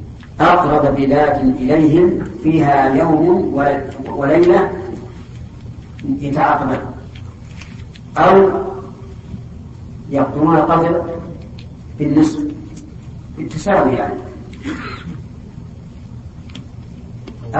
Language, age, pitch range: Arabic, 40-59, 125-155 Hz